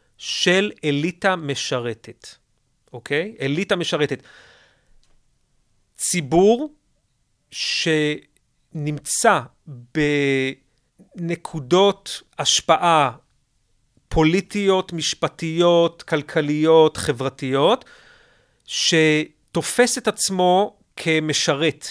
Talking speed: 50 wpm